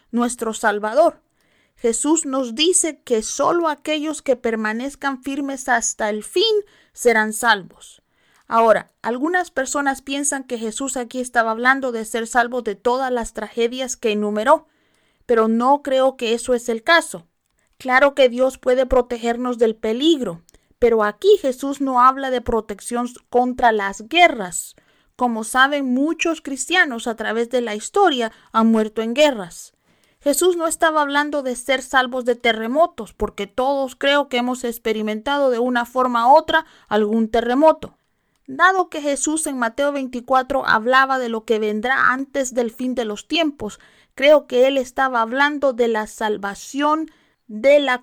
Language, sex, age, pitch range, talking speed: Spanish, female, 40-59, 230-280 Hz, 150 wpm